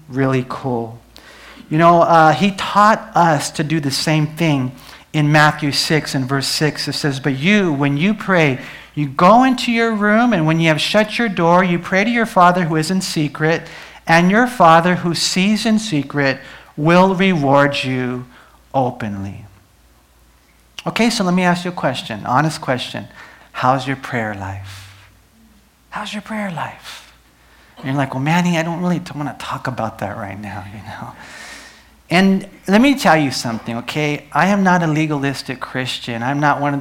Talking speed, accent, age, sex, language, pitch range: 180 wpm, American, 40-59, male, English, 130-175 Hz